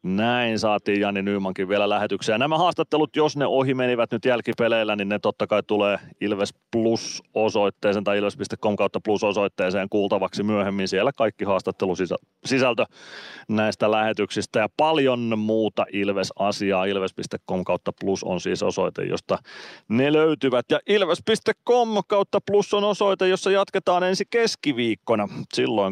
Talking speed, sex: 140 wpm, male